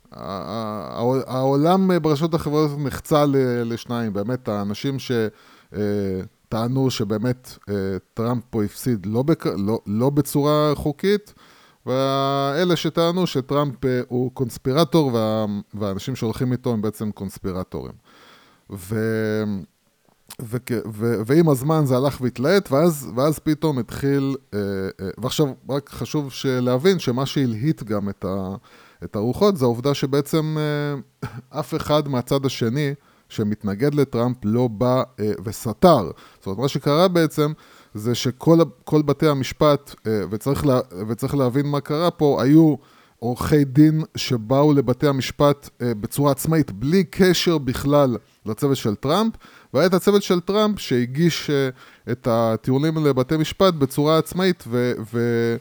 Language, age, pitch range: Hebrew, 20-39, 115-150 Hz